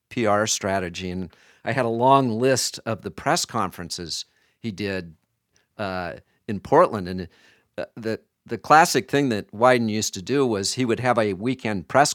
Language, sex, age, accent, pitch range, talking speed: English, male, 50-69, American, 95-120 Hz, 170 wpm